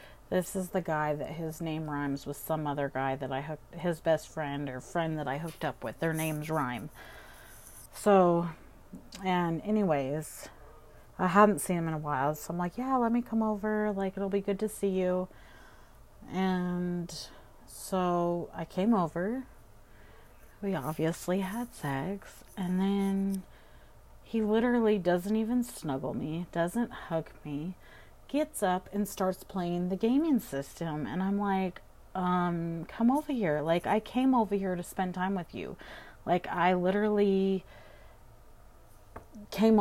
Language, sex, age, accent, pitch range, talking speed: English, female, 30-49, American, 155-200 Hz, 155 wpm